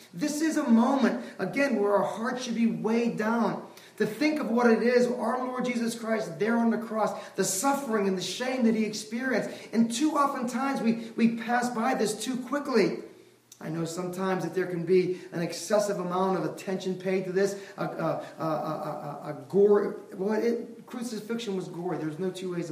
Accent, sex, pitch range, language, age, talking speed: American, male, 190-250 Hz, English, 30-49, 200 wpm